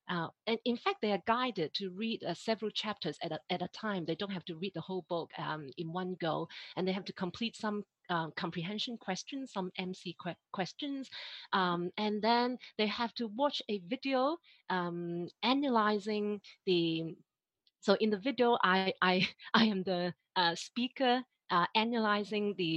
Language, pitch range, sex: English, 180-230 Hz, female